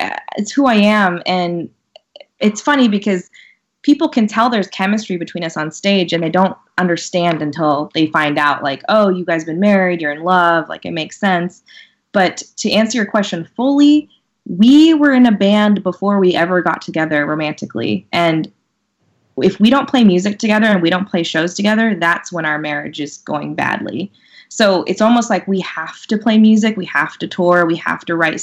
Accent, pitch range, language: American, 165-220 Hz, English